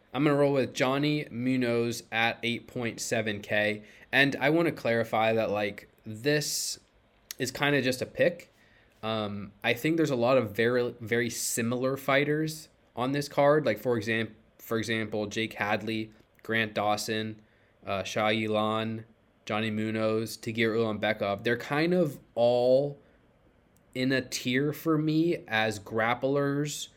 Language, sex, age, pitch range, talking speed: English, male, 20-39, 110-140 Hz, 140 wpm